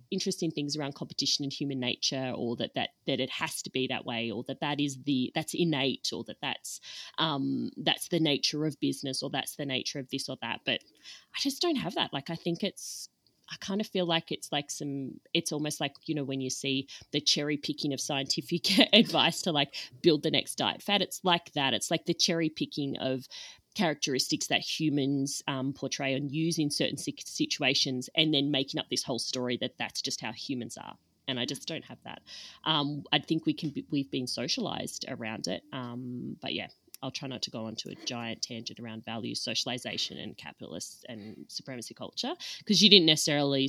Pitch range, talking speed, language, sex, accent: 135-165 Hz, 210 wpm, English, female, Australian